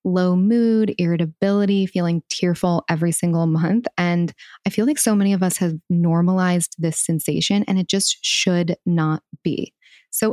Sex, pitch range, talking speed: female, 170-205 Hz, 155 wpm